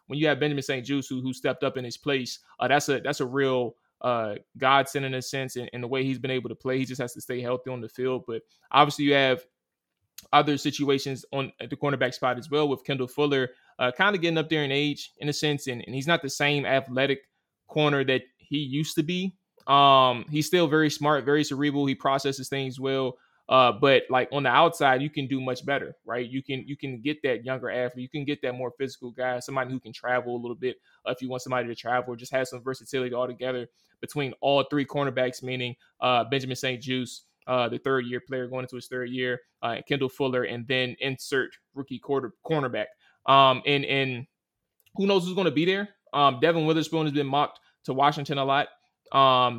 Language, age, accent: English, 20-39, American